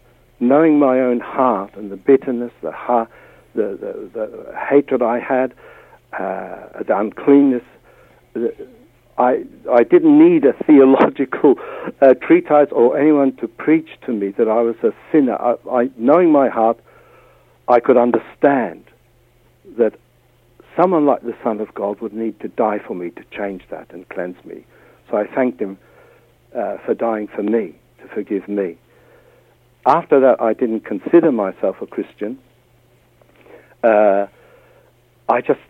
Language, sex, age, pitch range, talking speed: English, male, 60-79, 110-135 Hz, 145 wpm